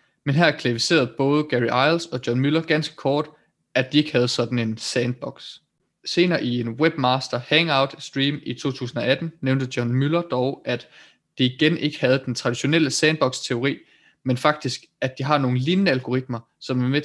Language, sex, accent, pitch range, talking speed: Danish, male, native, 125-150 Hz, 175 wpm